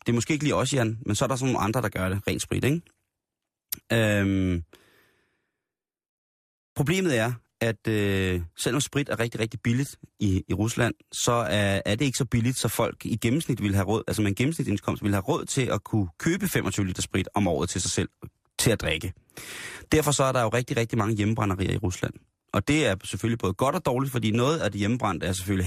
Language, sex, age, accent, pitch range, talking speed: Danish, male, 30-49, native, 95-120 Hz, 220 wpm